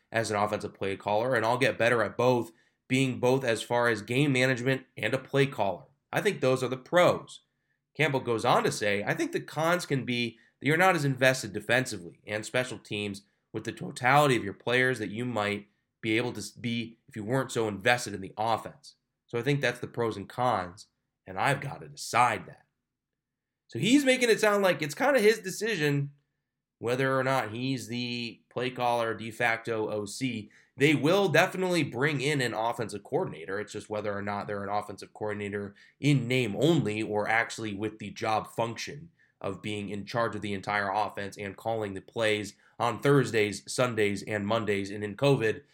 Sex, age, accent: male, 20-39, American